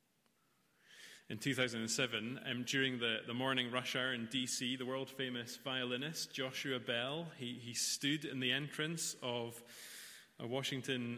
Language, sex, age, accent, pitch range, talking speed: English, male, 30-49, British, 120-145 Hz, 140 wpm